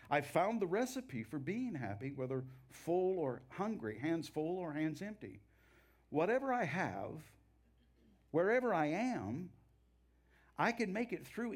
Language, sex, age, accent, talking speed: English, male, 50-69, American, 140 wpm